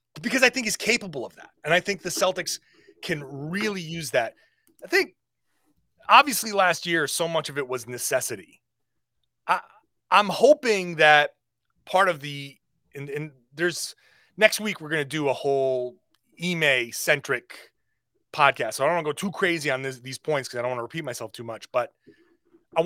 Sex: male